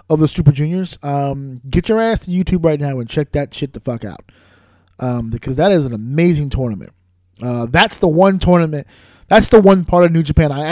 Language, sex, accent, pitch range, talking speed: English, male, American, 120-155 Hz, 220 wpm